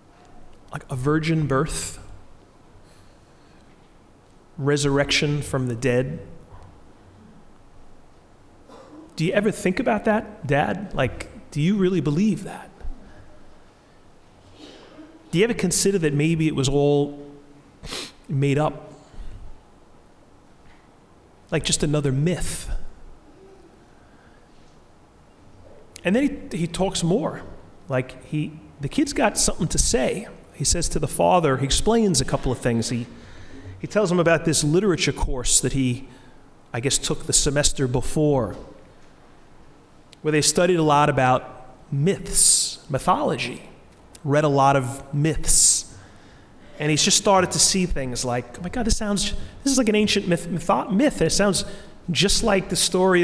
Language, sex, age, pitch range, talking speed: English, male, 30-49, 130-185 Hz, 130 wpm